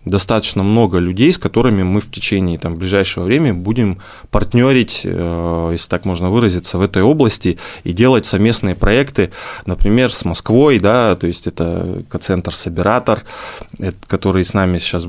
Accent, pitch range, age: native, 95-120 Hz, 20-39